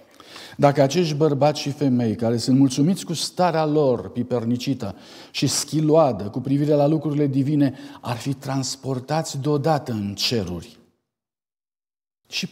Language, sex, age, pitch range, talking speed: Romanian, male, 50-69, 130-170 Hz, 125 wpm